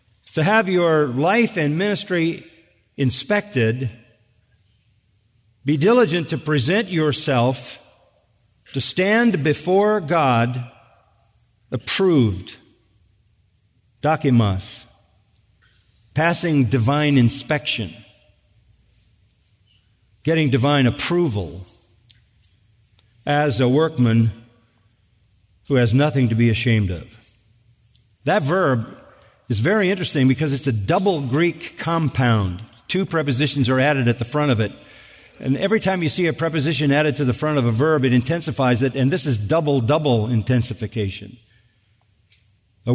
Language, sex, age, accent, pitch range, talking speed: English, male, 50-69, American, 110-155 Hz, 110 wpm